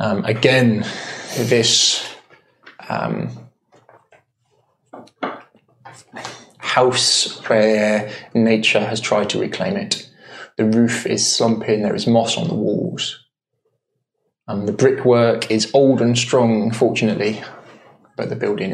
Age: 20-39